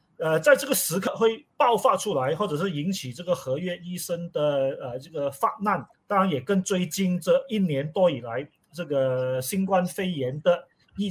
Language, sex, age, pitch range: Chinese, male, 30-49, 145-195 Hz